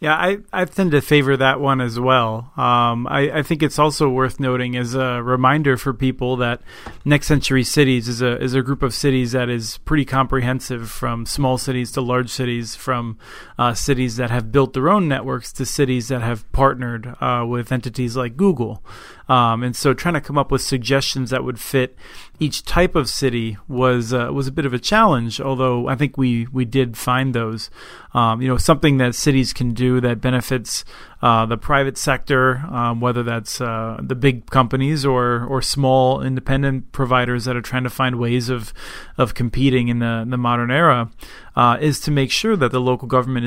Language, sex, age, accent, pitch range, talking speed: English, male, 30-49, American, 120-135 Hz, 200 wpm